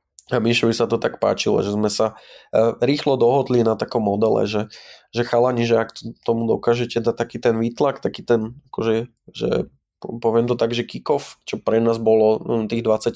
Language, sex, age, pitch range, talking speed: Slovak, male, 20-39, 110-120 Hz, 185 wpm